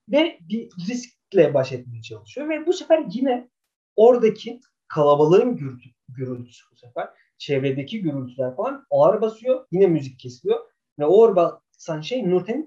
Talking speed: 135 wpm